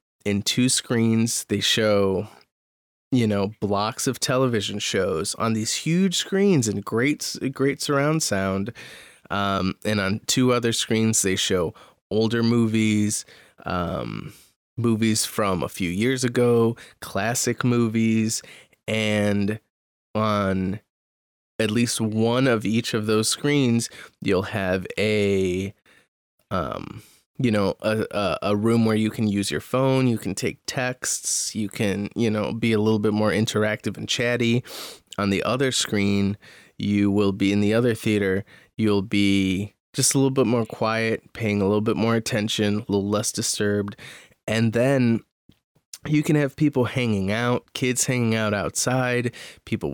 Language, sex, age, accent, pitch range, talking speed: English, male, 20-39, American, 100-120 Hz, 150 wpm